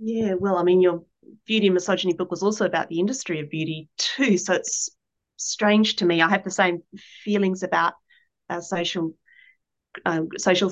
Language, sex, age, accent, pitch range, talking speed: English, female, 30-49, Australian, 170-195 Hz, 180 wpm